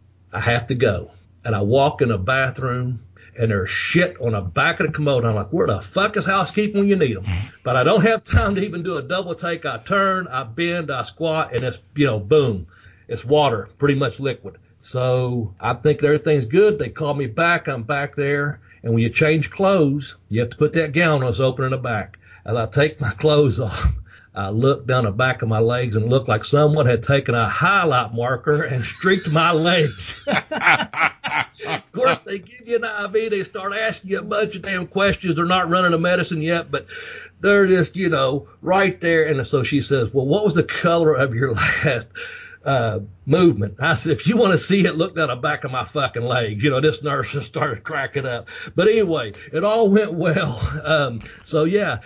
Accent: American